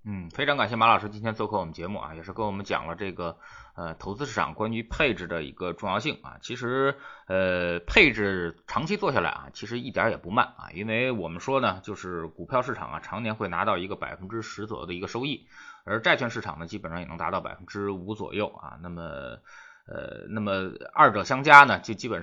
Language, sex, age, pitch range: Chinese, male, 20-39, 90-115 Hz